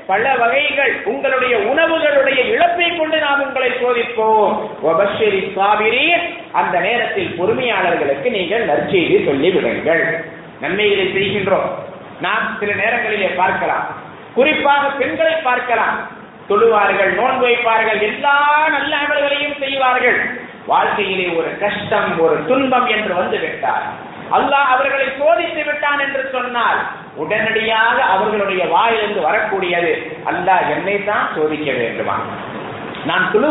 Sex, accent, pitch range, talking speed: male, Indian, 220-310 Hz, 70 wpm